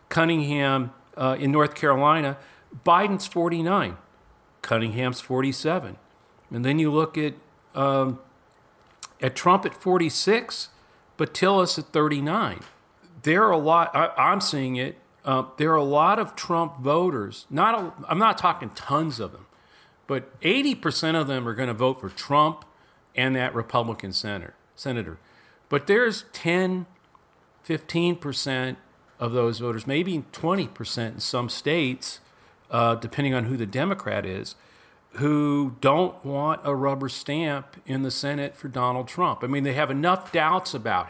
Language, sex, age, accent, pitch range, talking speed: English, male, 50-69, American, 125-160 Hz, 150 wpm